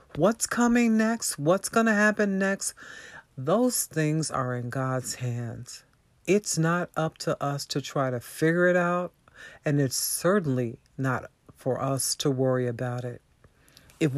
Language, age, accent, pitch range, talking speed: English, 50-69, American, 125-185 Hz, 150 wpm